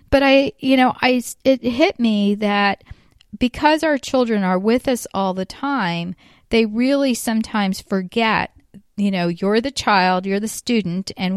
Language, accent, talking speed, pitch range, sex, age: English, American, 165 wpm, 190-230 Hz, female, 40-59